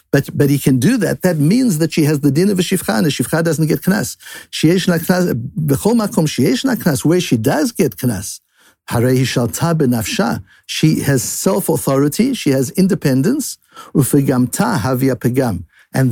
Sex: male